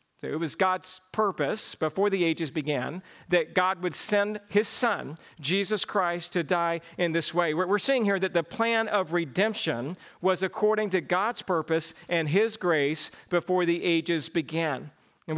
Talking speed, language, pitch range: 165 wpm, English, 160-185 Hz